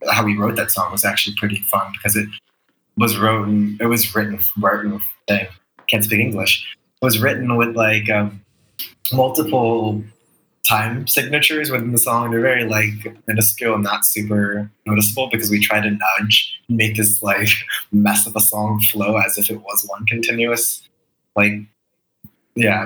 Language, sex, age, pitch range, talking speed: English, male, 20-39, 105-115 Hz, 165 wpm